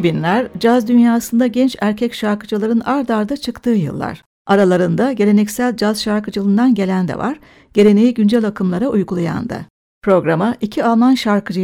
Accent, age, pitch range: native, 60-79, 200-240 Hz